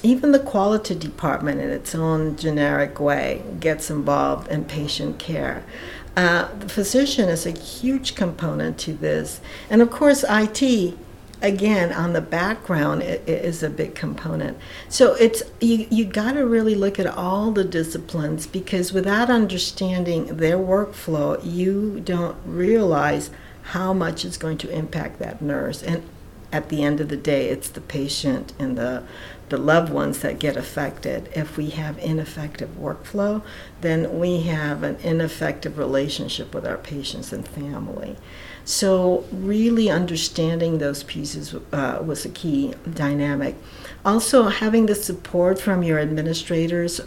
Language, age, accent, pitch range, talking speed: English, 60-79, American, 150-200 Hz, 150 wpm